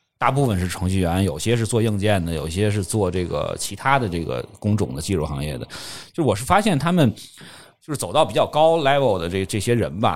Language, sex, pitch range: Chinese, male, 110-165 Hz